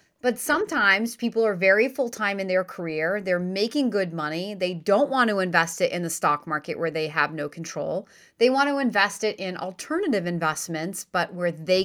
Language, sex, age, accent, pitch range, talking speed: English, female, 30-49, American, 175-245 Hz, 200 wpm